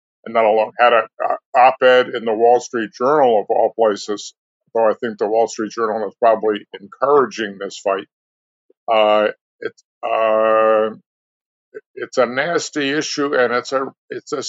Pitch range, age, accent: 110-135 Hz, 60-79, American